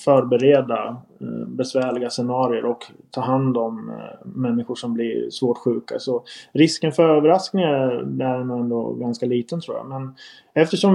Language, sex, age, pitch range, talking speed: English, male, 20-39, 120-145 Hz, 130 wpm